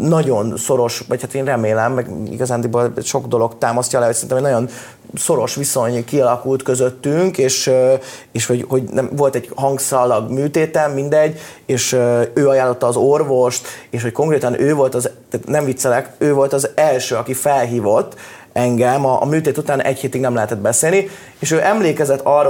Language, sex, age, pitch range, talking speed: Hungarian, male, 30-49, 125-155 Hz, 170 wpm